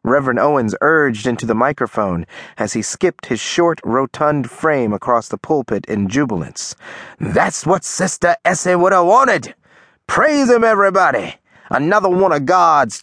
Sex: male